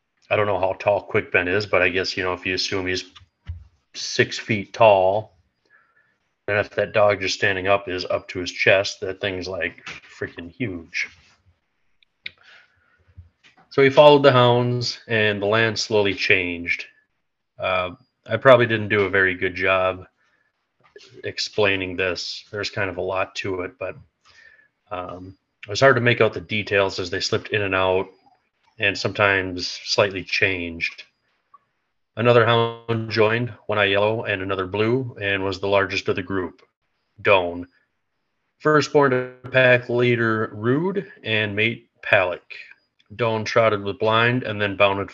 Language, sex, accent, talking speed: English, male, American, 155 wpm